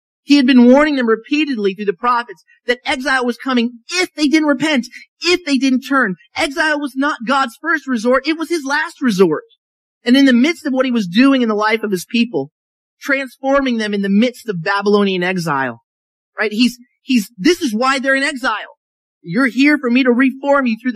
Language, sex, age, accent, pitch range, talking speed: English, male, 30-49, American, 175-265 Hz, 205 wpm